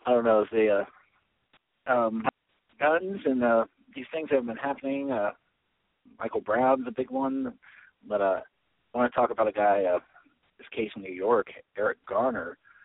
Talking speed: 180 wpm